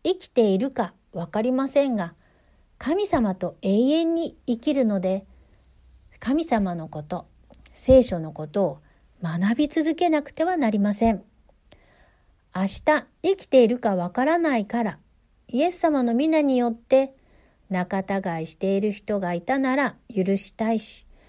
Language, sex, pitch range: Japanese, female, 190-270 Hz